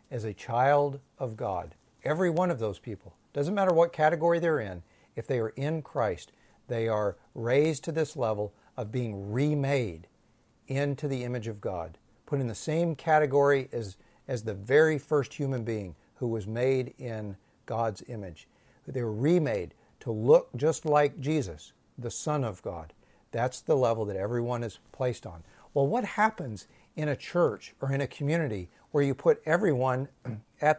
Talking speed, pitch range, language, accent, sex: 170 wpm, 110-150 Hz, English, American, male